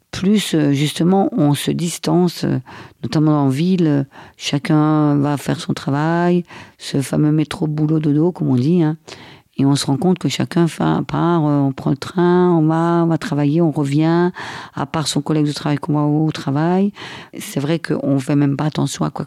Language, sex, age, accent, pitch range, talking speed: French, female, 50-69, French, 145-170 Hz, 185 wpm